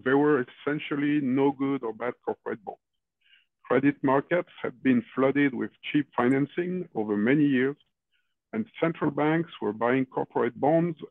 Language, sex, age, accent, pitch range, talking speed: English, male, 50-69, French, 130-160 Hz, 145 wpm